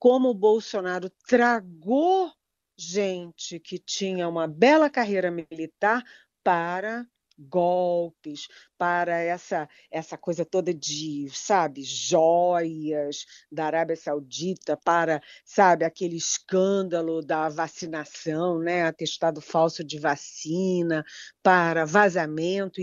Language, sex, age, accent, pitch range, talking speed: Portuguese, female, 40-59, Brazilian, 160-210 Hz, 90 wpm